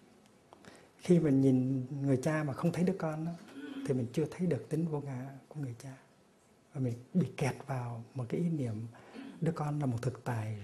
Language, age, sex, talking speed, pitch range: Vietnamese, 60-79, male, 210 wpm, 125-155 Hz